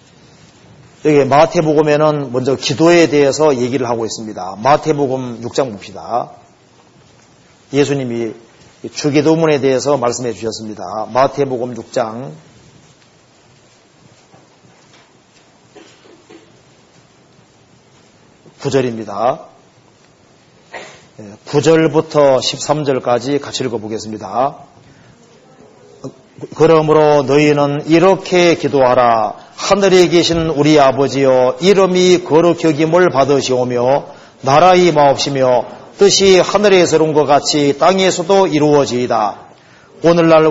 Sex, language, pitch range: male, Korean, 130-165 Hz